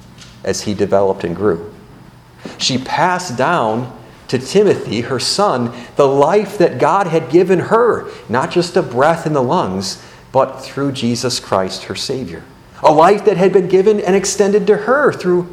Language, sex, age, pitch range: English, male, 40-59, 95-150 Hz